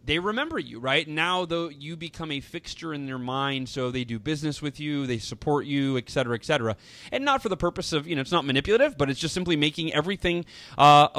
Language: English